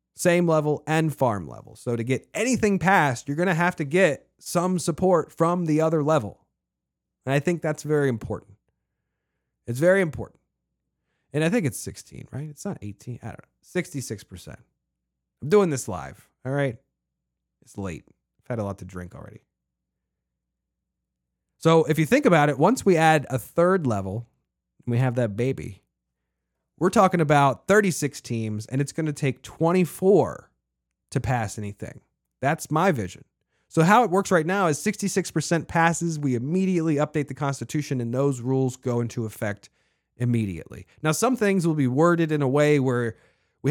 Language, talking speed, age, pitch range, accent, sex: English, 170 wpm, 30-49, 110-160 Hz, American, male